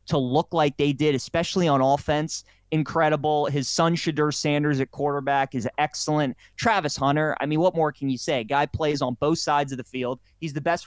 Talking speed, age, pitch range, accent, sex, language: 205 wpm, 30-49, 140-165 Hz, American, male, English